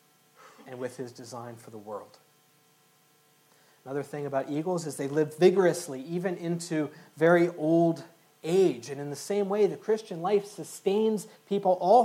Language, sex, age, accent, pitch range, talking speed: English, male, 40-59, American, 130-150 Hz, 155 wpm